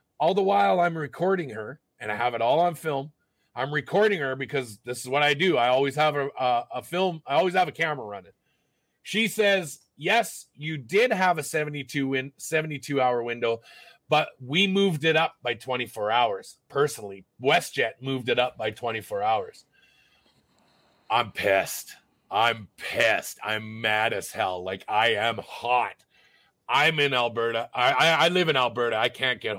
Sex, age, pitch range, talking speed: male, 30-49, 120-160 Hz, 175 wpm